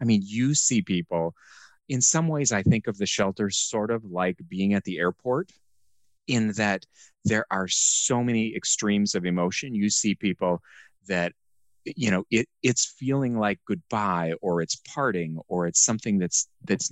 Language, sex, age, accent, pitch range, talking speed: English, male, 30-49, American, 90-115 Hz, 170 wpm